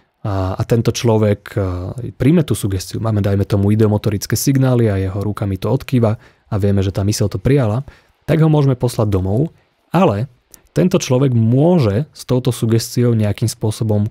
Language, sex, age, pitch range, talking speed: Slovak, male, 30-49, 105-125 Hz, 160 wpm